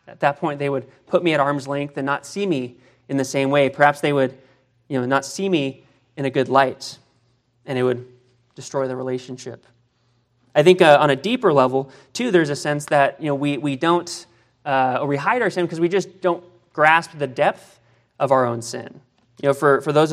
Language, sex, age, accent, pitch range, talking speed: English, male, 30-49, American, 130-165 Hz, 225 wpm